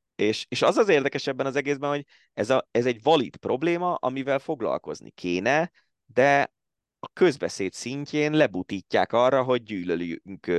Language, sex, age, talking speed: Hungarian, male, 20-39, 145 wpm